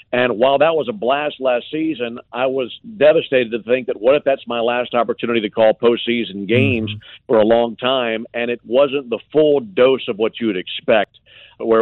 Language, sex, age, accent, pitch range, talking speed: English, male, 50-69, American, 110-130 Hz, 205 wpm